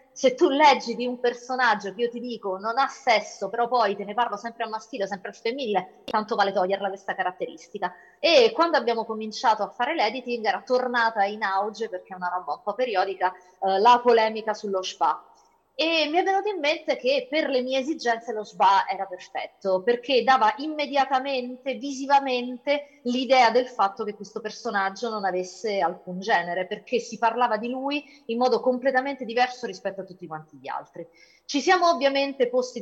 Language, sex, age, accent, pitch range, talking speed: Italian, female, 30-49, native, 200-255 Hz, 180 wpm